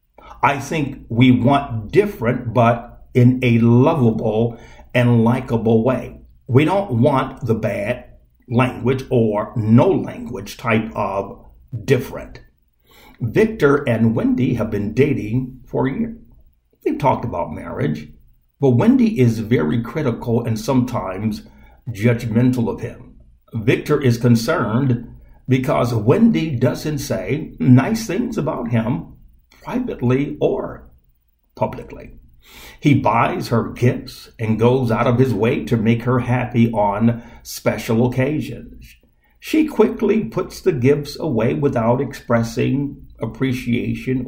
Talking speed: 120 wpm